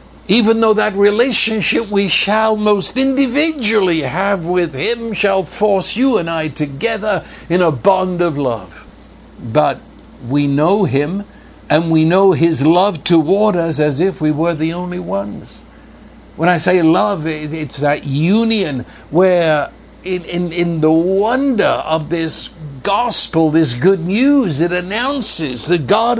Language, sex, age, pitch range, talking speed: English, male, 60-79, 145-200 Hz, 145 wpm